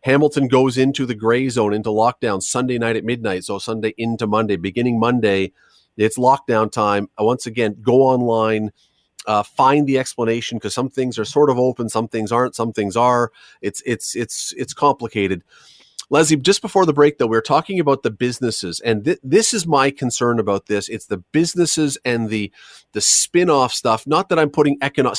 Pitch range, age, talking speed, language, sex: 110-135 Hz, 40-59, 190 wpm, English, male